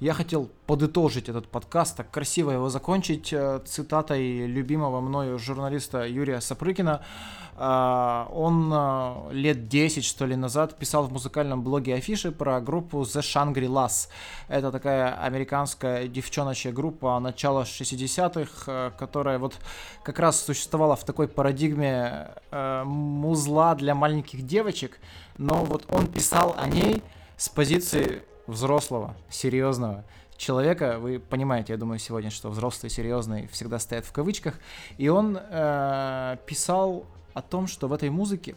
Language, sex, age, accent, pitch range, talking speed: Russian, male, 20-39, native, 125-155 Hz, 130 wpm